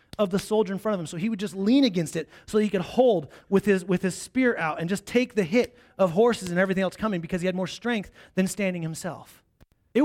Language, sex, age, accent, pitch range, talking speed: English, male, 30-49, American, 165-230 Hz, 265 wpm